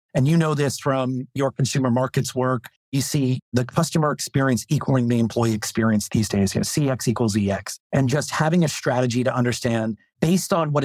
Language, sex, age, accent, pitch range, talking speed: English, male, 40-59, American, 120-145 Hz, 185 wpm